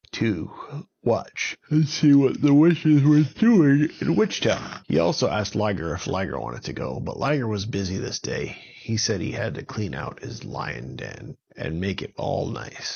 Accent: American